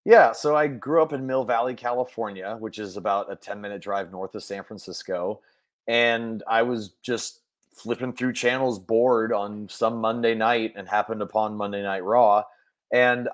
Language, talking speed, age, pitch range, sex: English, 170 wpm, 30-49, 105-140 Hz, male